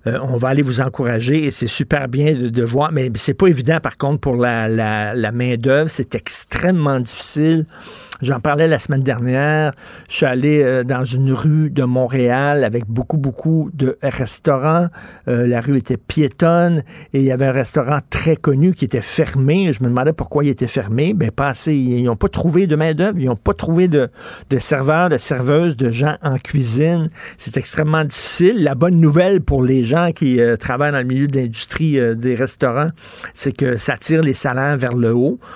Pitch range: 130-160 Hz